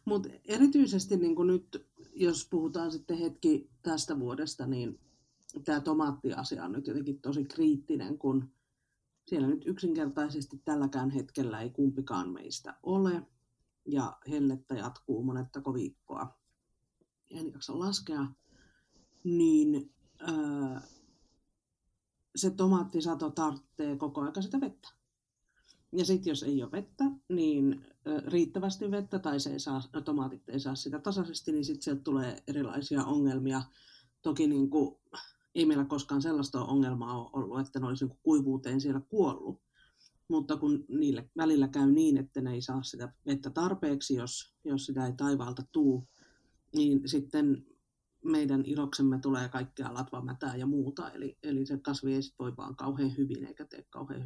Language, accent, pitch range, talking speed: Finnish, native, 135-175 Hz, 135 wpm